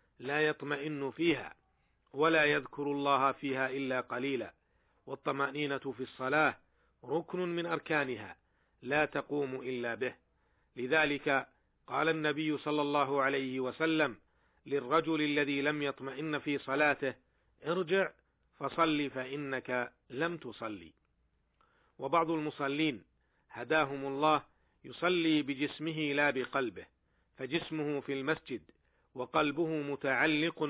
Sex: male